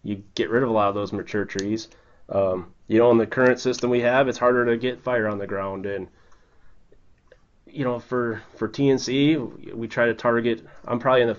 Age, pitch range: 30-49, 105-120 Hz